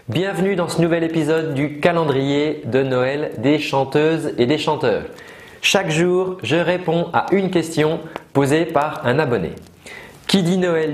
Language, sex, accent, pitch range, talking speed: French, male, French, 125-165 Hz, 155 wpm